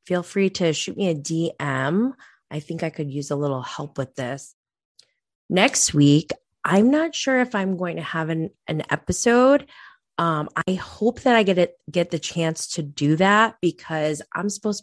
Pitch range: 155-220 Hz